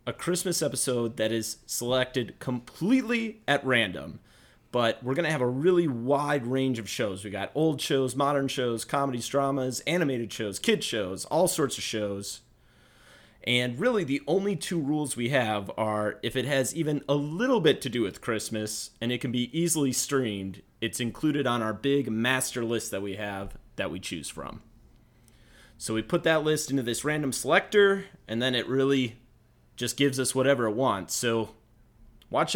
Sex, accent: male, American